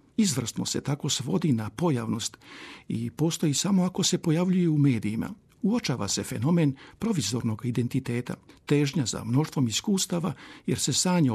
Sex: male